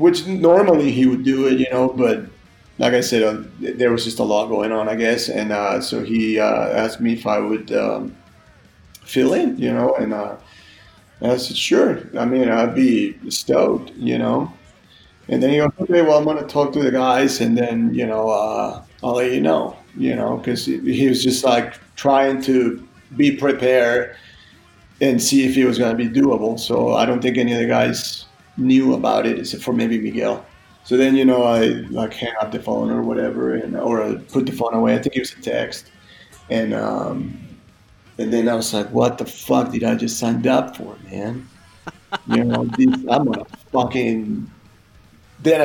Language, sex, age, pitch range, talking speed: English, male, 40-59, 110-130 Hz, 205 wpm